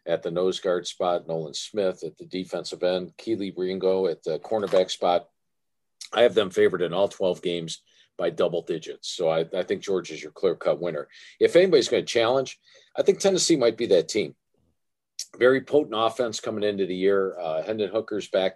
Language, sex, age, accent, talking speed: English, male, 50-69, American, 195 wpm